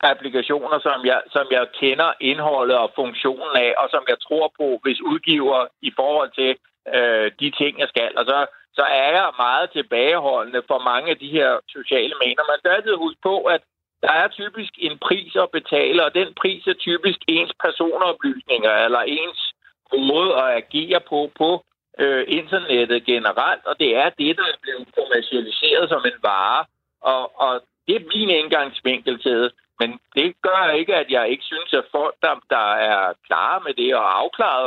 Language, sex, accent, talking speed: Danish, male, native, 175 wpm